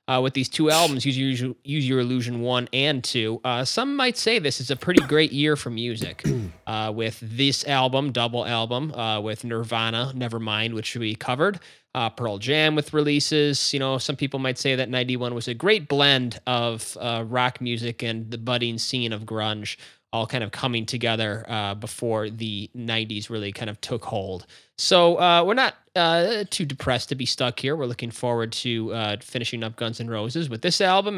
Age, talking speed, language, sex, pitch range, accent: 20-39, 195 wpm, English, male, 115-145 Hz, American